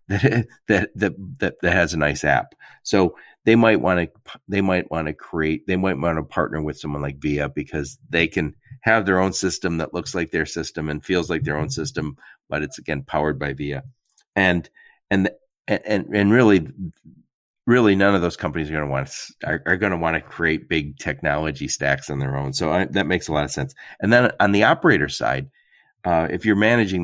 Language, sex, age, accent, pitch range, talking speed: English, male, 40-59, American, 75-100 Hz, 210 wpm